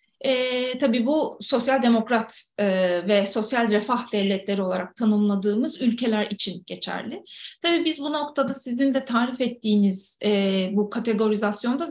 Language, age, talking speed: Turkish, 30-49, 130 wpm